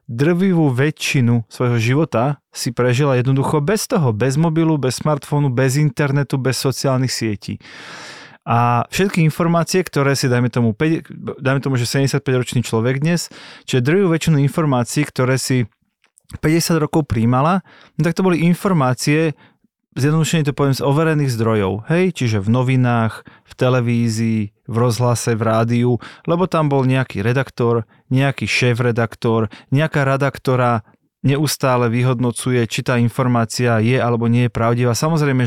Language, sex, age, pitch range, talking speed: Slovak, male, 30-49, 120-150 Hz, 140 wpm